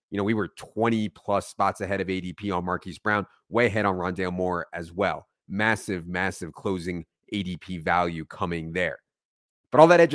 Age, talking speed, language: 30-49, 185 wpm, English